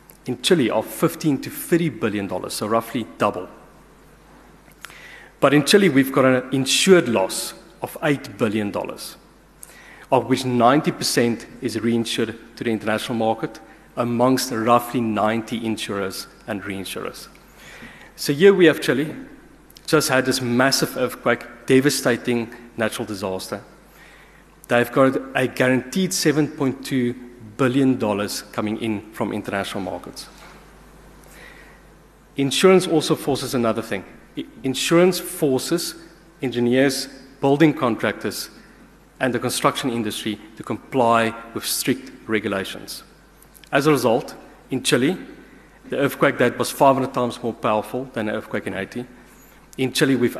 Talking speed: 120 wpm